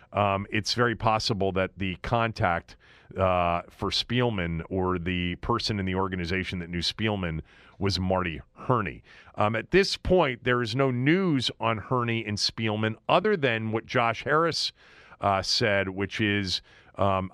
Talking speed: 150 wpm